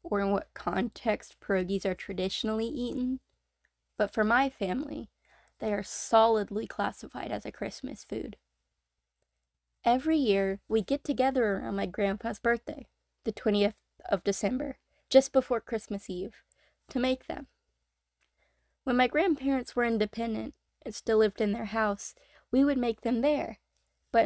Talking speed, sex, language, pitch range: 140 wpm, female, English, 200-255 Hz